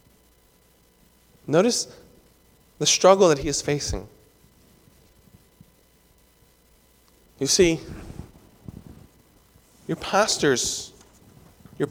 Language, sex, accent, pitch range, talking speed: English, male, American, 150-235 Hz, 60 wpm